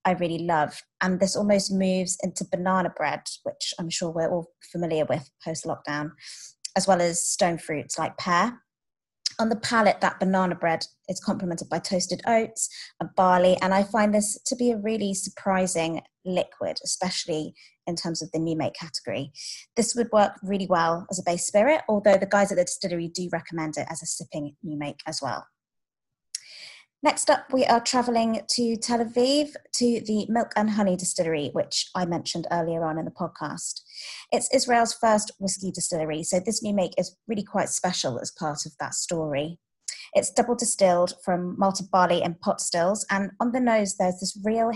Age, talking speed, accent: 20-39, 185 wpm, British